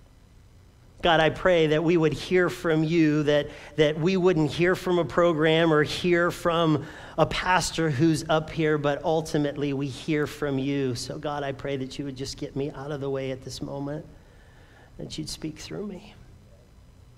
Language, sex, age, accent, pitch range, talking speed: English, male, 40-59, American, 150-205 Hz, 185 wpm